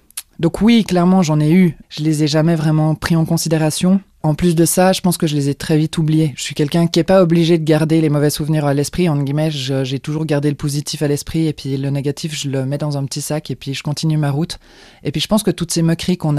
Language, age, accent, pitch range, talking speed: French, 20-39, French, 145-170 Hz, 285 wpm